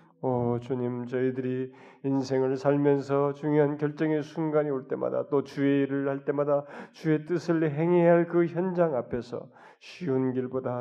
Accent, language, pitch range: native, Korean, 125-140 Hz